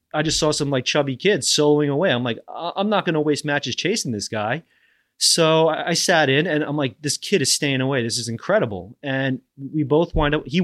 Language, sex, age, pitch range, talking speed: English, male, 30-49, 120-150 Hz, 235 wpm